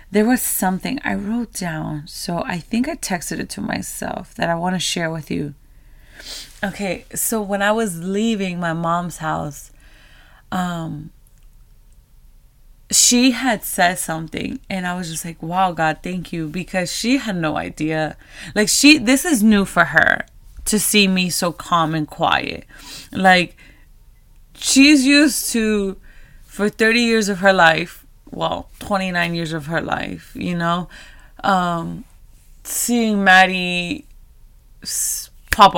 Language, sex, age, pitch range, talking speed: English, female, 20-39, 165-205 Hz, 145 wpm